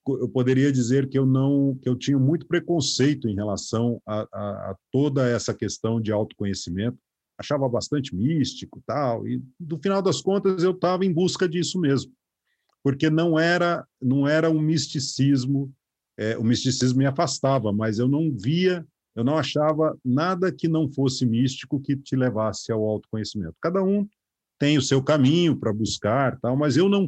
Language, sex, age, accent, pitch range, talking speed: Portuguese, male, 50-69, Brazilian, 120-155 Hz, 160 wpm